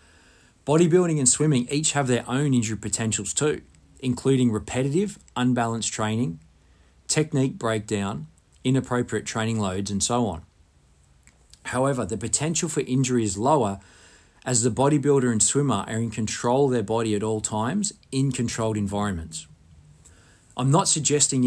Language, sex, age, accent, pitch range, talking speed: English, male, 40-59, Australian, 95-130 Hz, 135 wpm